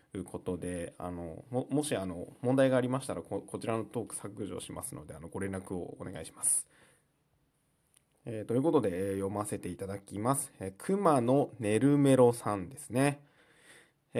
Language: Japanese